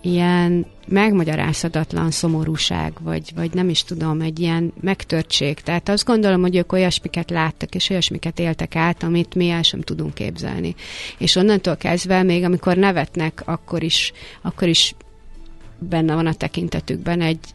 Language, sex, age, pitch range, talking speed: Hungarian, female, 30-49, 160-185 Hz, 145 wpm